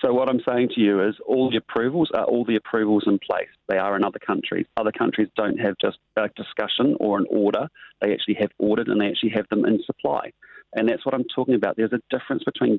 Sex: male